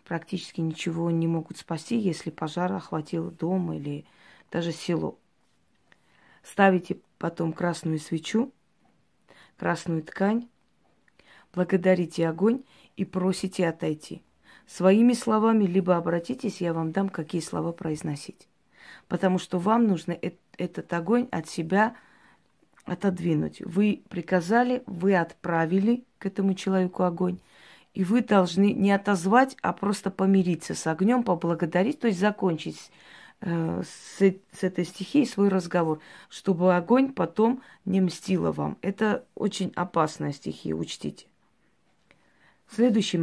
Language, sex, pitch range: Russian, female, 170-200 Hz